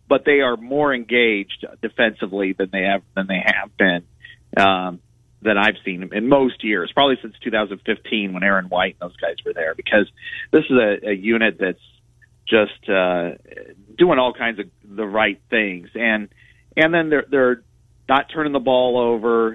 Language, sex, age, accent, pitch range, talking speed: English, male, 40-59, American, 105-125 Hz, 175 wpm